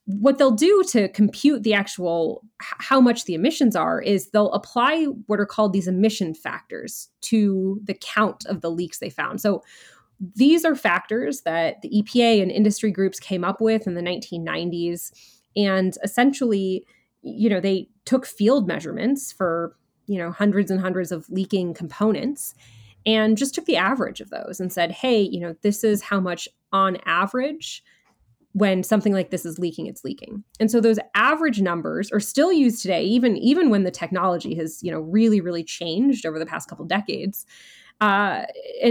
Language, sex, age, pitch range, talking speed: English, female, 20-39, 180-240 Hz, 175 wpm